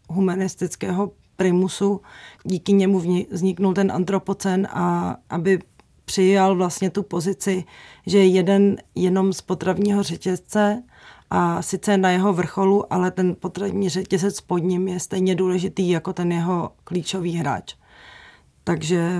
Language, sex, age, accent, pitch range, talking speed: Czech, female, 30-49, native, 175-195 Hz, 125 wpm